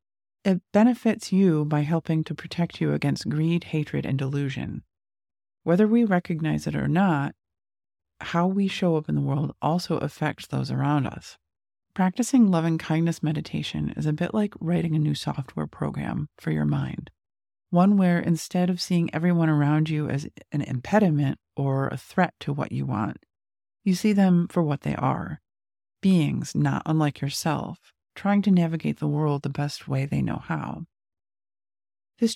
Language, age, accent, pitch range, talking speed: English, 40-59, American, 140-180 Hz, 165 wpm